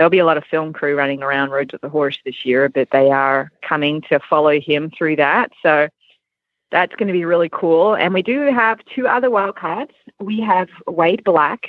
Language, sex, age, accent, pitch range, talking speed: English, female, 30-49, American, 145-200 Hz, 215 wpm